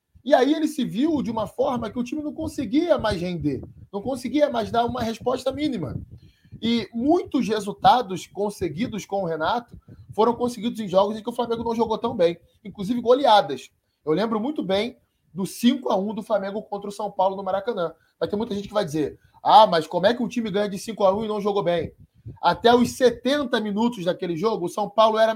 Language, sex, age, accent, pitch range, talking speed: Portuguese, male, 20-39, Brazilian, 200-245 Hz, 210 wpm